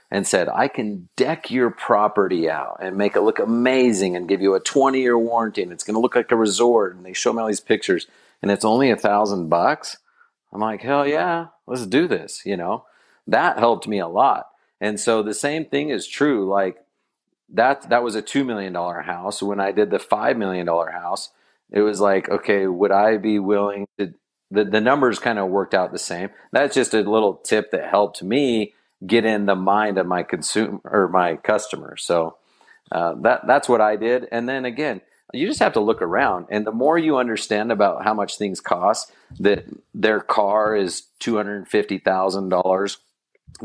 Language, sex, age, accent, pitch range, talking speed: English, male, 40-59, American, 100-120 Hz, 200 wpm